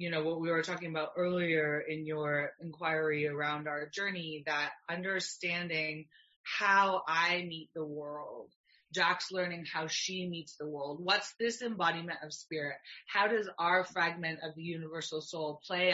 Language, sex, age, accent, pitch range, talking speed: English, female, 30-49, American, 155-180 Hz, 160 wpm